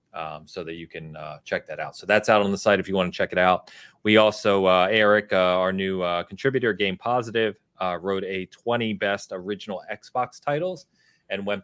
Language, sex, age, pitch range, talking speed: English, male, 30-49, 85-110 Hz, 220 wpm